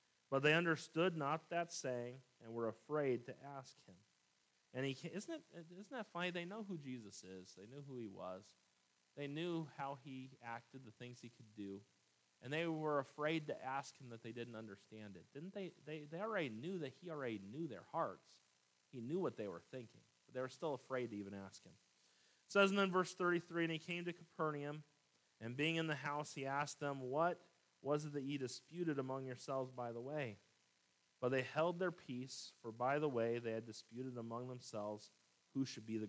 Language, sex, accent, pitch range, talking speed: English, male, American, 115-160 Hz, 210 wpm